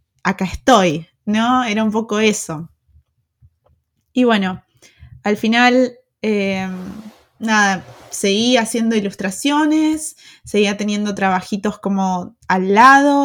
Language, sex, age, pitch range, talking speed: Spanish, female, 20-39, 185-235 Hz, 100 wpm